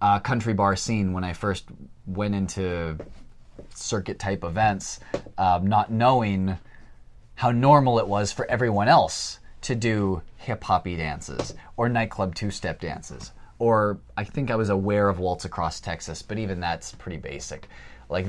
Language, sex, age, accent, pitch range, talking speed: English, male, 30-49, American, 90-120 Hz, 150 wpm